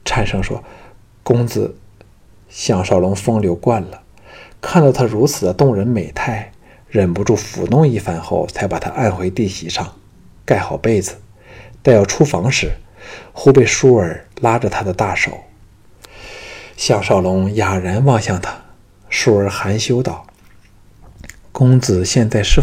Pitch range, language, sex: 90-115 Hz, Chinese, male